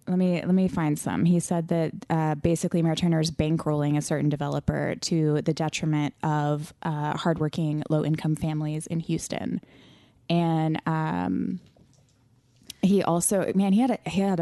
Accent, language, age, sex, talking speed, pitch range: American, English, 20-39, female, 160 wpm, 155-185 Hz